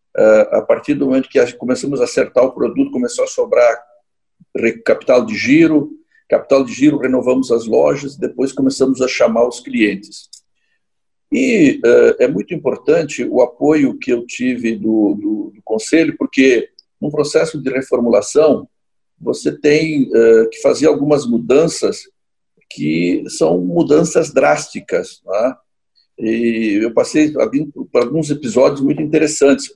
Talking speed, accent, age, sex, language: 135 wpm, Brazilian, 50-69, male, Portuguese